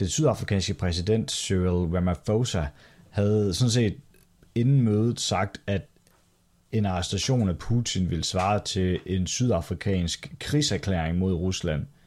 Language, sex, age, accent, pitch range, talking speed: Danish, male, 30-49, native, 85-105 Hz, 120 wpm